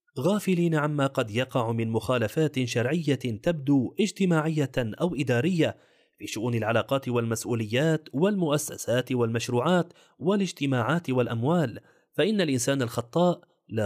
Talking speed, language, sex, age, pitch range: 100 wpm, Arabic, male, 30-49, 120-155 Hz